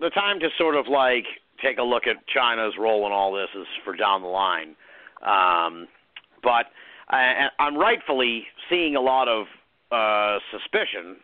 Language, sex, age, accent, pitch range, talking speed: English, male, 50-69, American, 110-170 Hz, 160 wpm